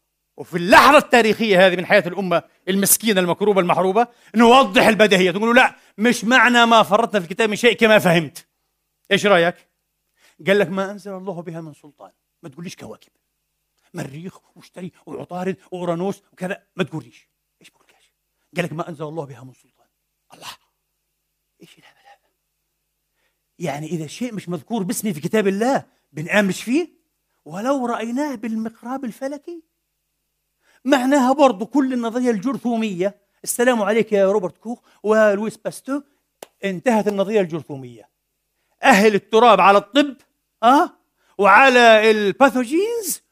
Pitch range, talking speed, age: 190-265 Hz, 130 wpm, 40-59